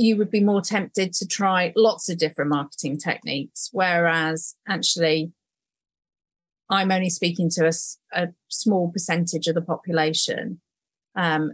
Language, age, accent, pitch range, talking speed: English, 30-49, British, 165-190 Hz, 135 wpm